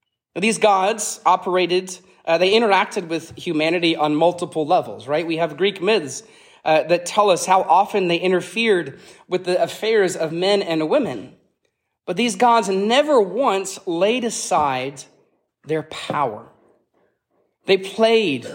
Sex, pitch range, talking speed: male, 160-195 Hz, 135 wpm